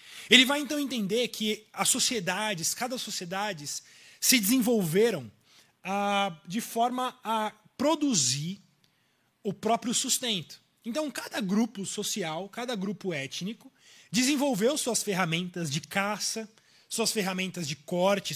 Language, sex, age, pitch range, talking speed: Portuguese, male, 20-39, 190-255 Hz, 115 wpm